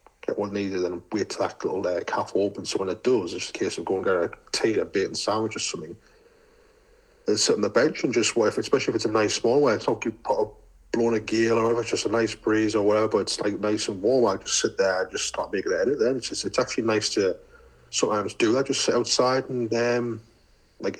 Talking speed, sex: 270 wpm, male